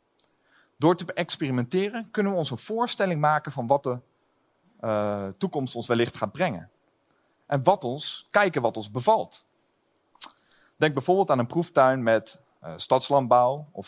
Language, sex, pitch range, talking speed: Dutch, male, 120-175 Hz, 145 wpm